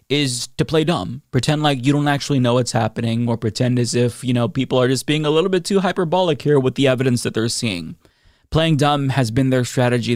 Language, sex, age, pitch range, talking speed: English, male, 20-39, 120-145 Hz, 235 wpm